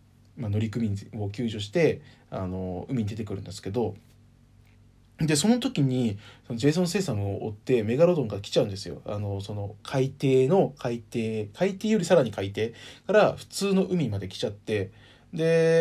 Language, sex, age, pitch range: Japanese, male, 20-39, 105-150 Hz